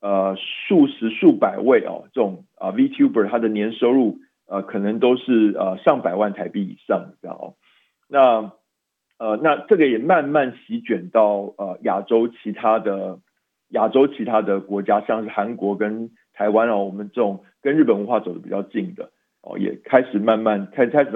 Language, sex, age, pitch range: Chinese, male, 50-69, 105-175 Hz